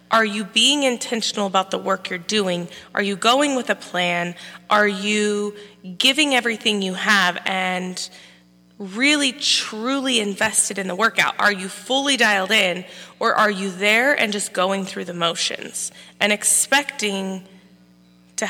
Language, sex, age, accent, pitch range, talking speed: English, female, 20-39, American, 175-215 Hz, 150 wpm